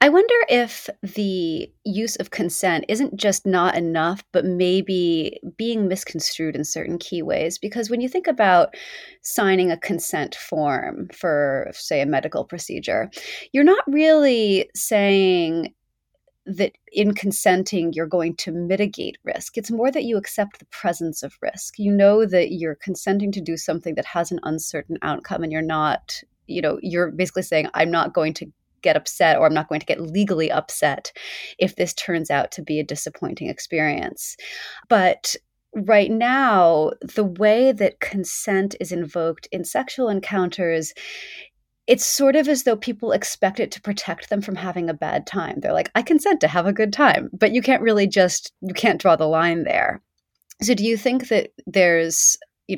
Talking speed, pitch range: 175 wpm, 165-220 Hz